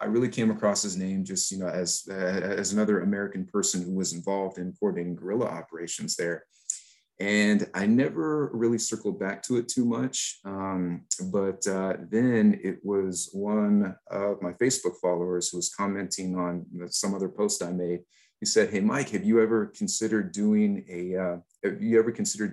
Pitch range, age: 95-120 Hz, 30-49